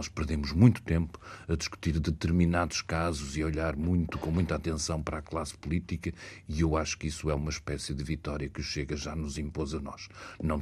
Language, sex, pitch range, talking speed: Portuguese, male, 75-85 Hz, 210 wpm